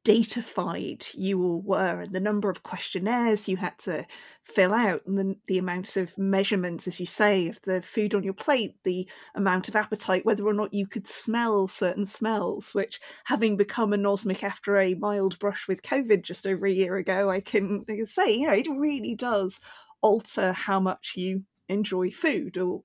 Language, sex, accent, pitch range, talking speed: English, female, British, 190-215 Hz, 190 wpm